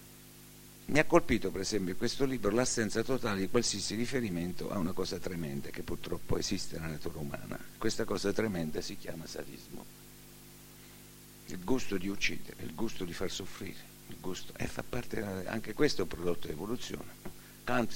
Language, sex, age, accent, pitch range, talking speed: Italian, male, 60-79, native, 90-115 Hz, 175 wpm